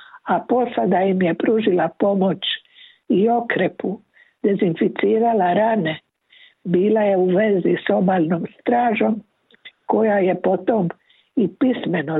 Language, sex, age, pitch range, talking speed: Croatian, female, 60-79, 170-230 Hz, 110 wpm